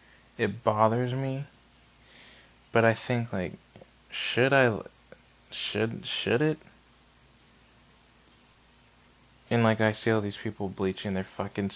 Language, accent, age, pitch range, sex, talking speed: English, American, 20-39, 100-125 Hz, male, 110 wpm